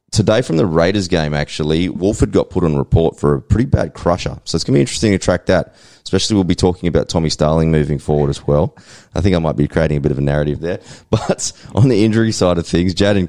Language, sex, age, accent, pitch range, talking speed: English, male, 20-39, Australian, 80-95 Hz, 255 wpm